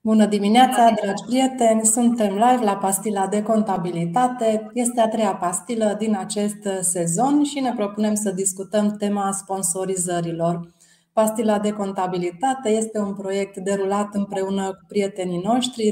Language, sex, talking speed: Romanian, female, 130 wpm